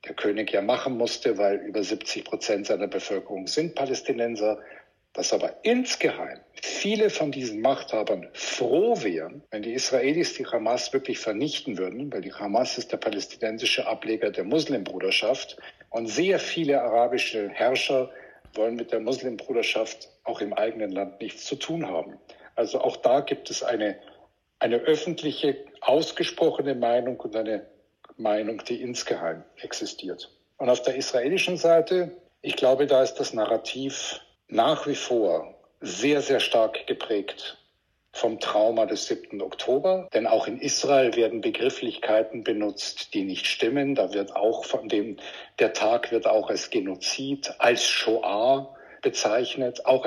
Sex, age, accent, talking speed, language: male, 60-79, German, 145 wpm, German